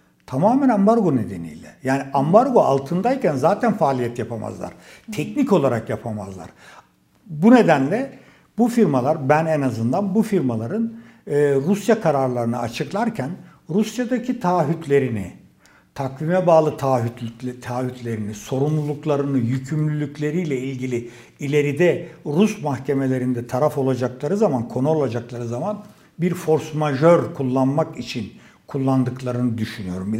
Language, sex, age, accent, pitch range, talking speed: Turkish, male, 60-79, native, 125-180 Hz, 95 wpm